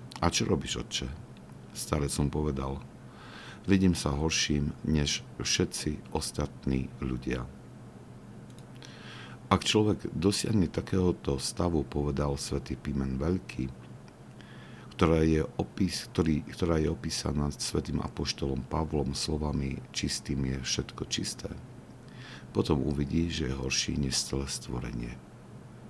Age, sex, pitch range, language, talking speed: 50-69, male, 65-80 Hz, Slovak, 105 wpm